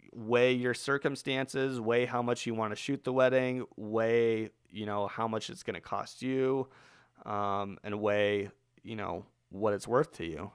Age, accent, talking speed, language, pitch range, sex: 30-49, American, 180 wpm, English, 105-140 Hz, male